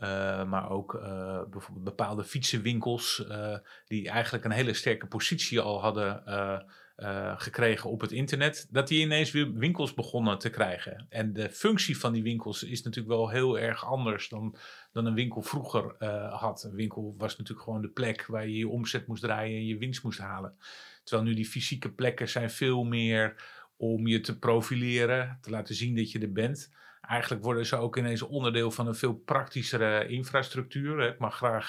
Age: 40-59